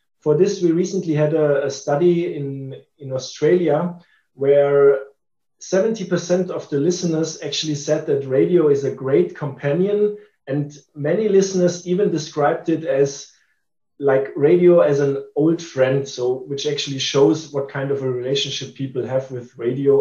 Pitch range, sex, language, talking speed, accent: 135-175 Hz, male, English, 145 wpm, German